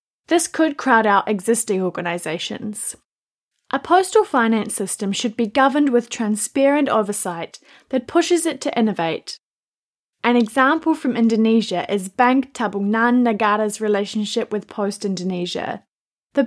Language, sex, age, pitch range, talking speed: English, female, 20-39, 205-265 Hz, 125 wpm